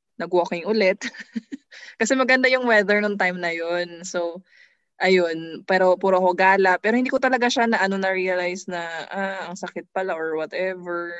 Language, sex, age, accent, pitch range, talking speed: English, female, 20-39, Filipino, 165-210 Hz, 170 wpm